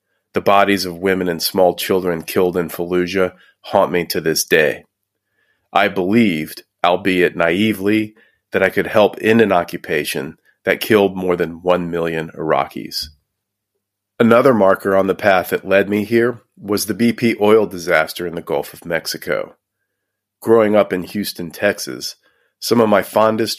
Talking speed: 155 wpm